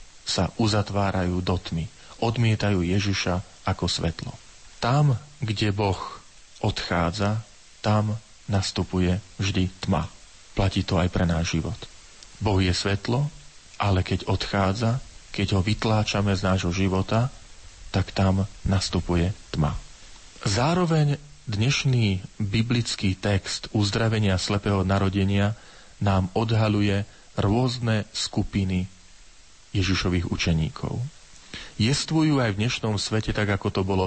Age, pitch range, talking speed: 40-59, 95-110 Hz, 105 wpm